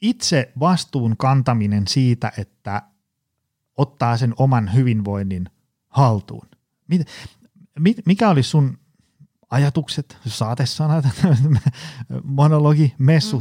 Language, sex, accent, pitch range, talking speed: Finnish, male, native, 115-145 Hz, 80 wpm